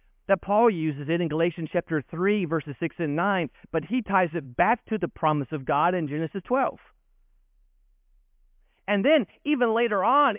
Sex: male